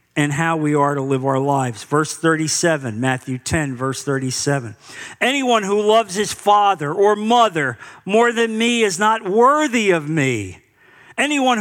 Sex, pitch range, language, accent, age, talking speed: male, 195-270 Hz, English, American, 50-69, 155 wpm